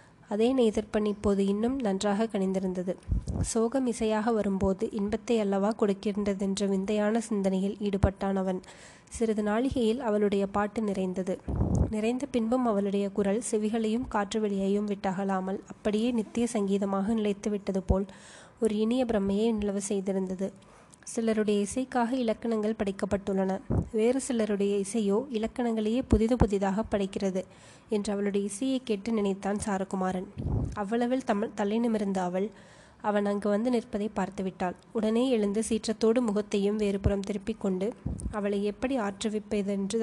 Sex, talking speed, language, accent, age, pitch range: female, 110 wpm, Tamil, native, 20-39, 195-225 Hz